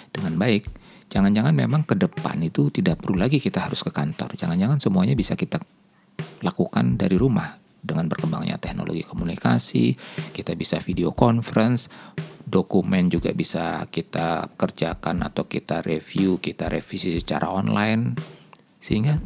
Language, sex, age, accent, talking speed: Indonesian, male, 50-69, native, 130 wpm